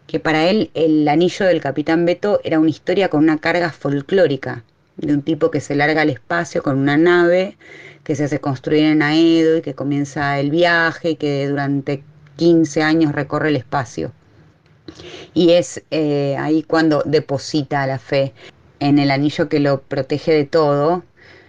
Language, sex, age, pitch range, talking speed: Spanish, female, 20-39, 140-170 Hz, 170 wpm